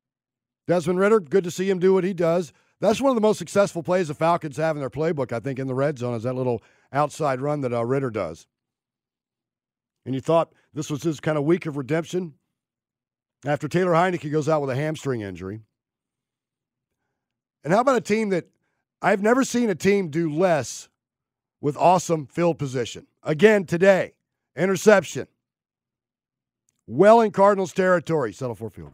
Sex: male